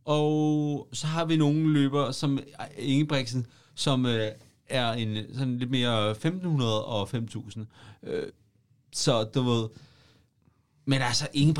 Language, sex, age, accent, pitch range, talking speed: Danish, male, 30-49, native, 120-150 Hz, 125 wpm